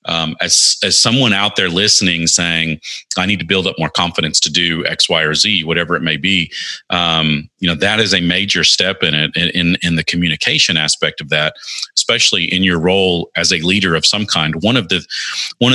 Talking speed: 215 wpm